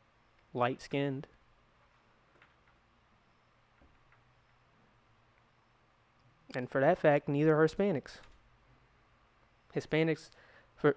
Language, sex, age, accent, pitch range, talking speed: English, male, 20-39, American, 120-180 Hz, 55 wpm